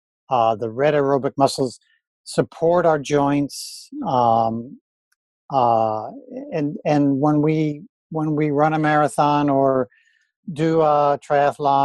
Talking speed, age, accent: 115 wpm, 50-69, American